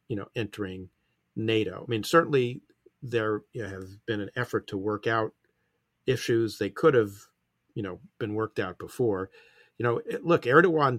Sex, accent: male, American